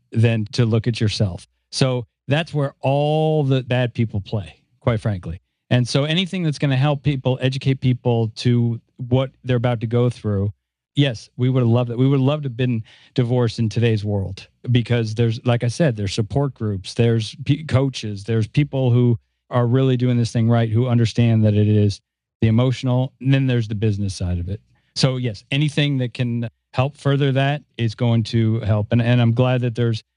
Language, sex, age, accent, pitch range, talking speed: English, male, 40-59, American, 115-135 Hz, 200 wpm